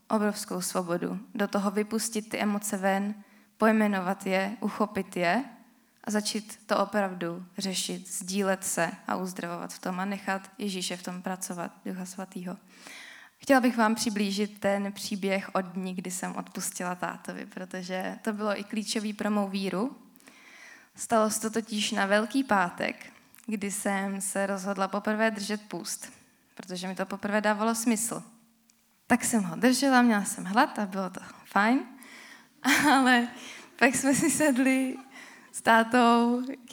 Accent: native